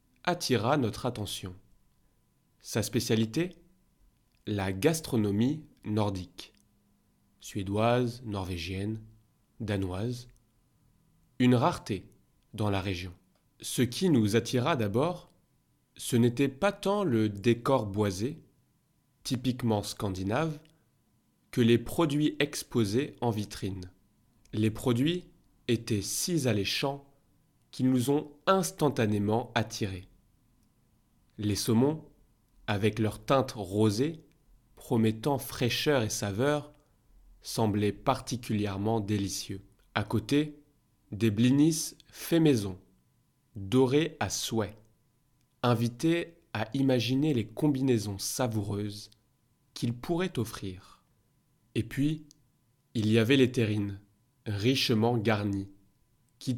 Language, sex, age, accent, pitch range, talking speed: French, male, 30-49, French, 105-140 Hz, 90 wpm